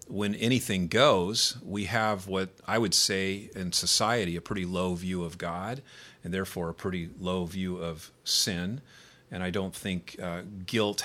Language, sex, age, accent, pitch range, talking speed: English, male, 40-59, American, 90-105 Hz, 170 wpm